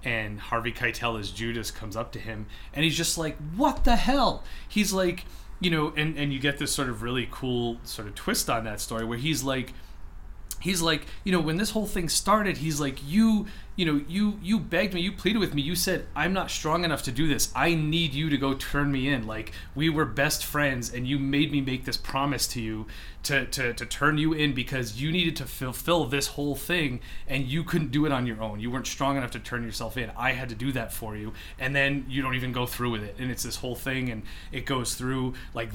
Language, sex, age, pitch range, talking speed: English, male, 30-49, 115-150 Hz, 245 wpm